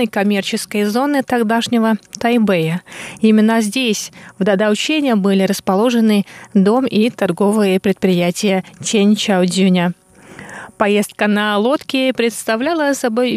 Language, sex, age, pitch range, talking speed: Russian, female, 20-39, 195-245 Hz, 90 wpm